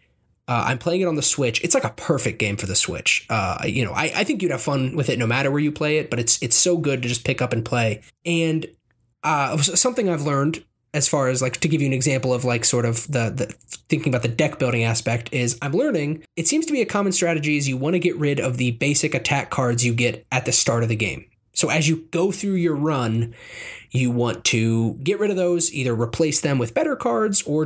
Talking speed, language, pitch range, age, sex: 260 wpm, English, 120-160 Hz, 20-39, male